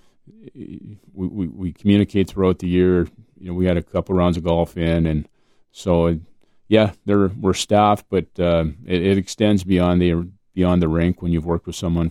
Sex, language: male, English